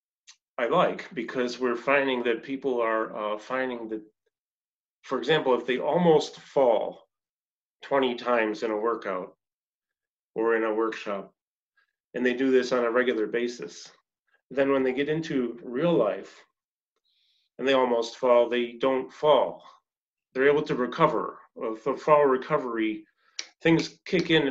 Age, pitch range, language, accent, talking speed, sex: 30-49, 120-145 Hz, English, American, 140 wpm, male